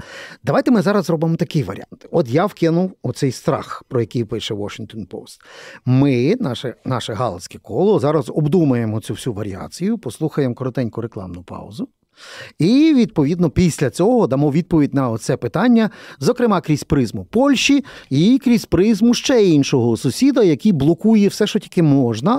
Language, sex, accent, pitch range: Ukrainian, male, native, 130-205 Hz